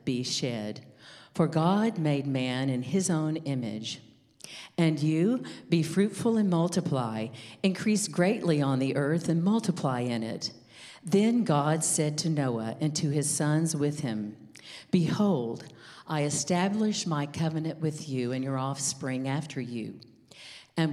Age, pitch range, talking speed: 50-69, 130-170 Hz, 140 wpm